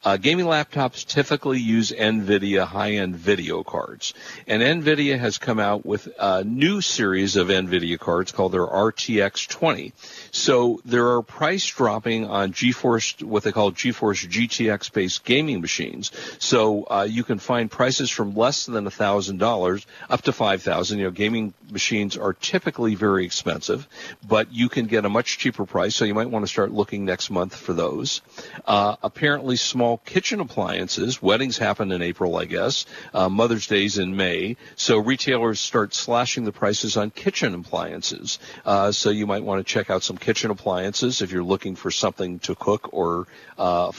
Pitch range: 100-120 Hz